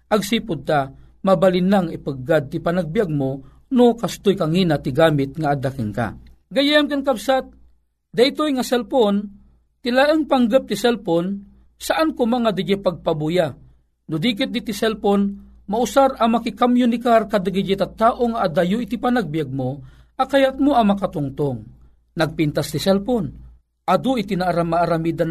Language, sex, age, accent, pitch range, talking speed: Filipino, male, 50-69, native, 160-225 Hz, 125 wpm